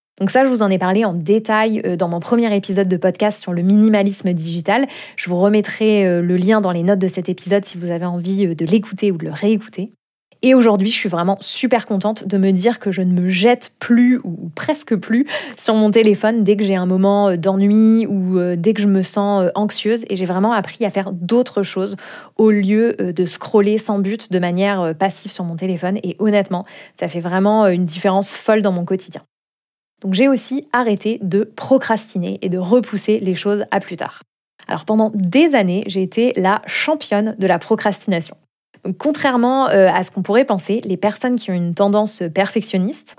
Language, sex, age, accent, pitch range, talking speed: French, female, 20-39, French, 190-230 Hz, 200 wpm